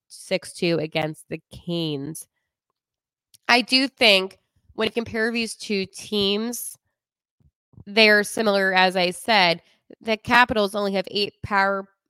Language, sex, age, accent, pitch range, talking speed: English, female, 20-39, American, 185-245 Hz, 115 wpm